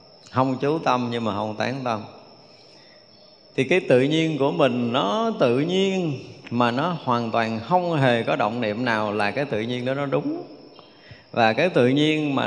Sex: male